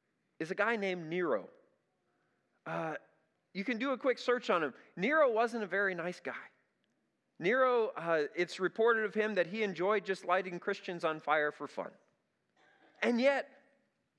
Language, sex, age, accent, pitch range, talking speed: English, male, 40-59, American, 165-210 Hz, 160 wpm